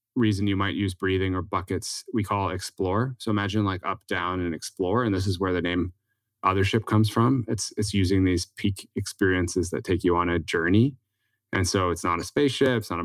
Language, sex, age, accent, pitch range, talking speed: English, male, 20-39, American, 95-110 Hz, 220 wpm